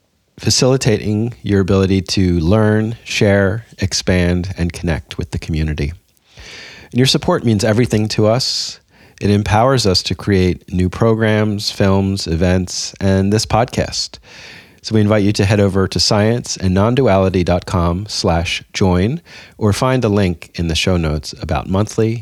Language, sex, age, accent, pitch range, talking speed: English, male, 30-49, American, 90-110 Hz, 145 wpm